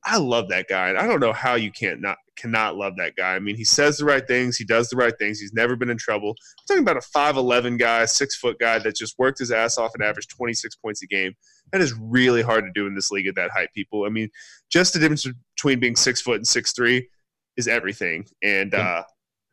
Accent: American